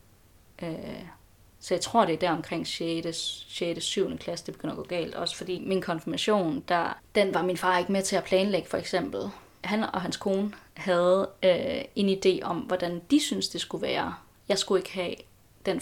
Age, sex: 20-39, female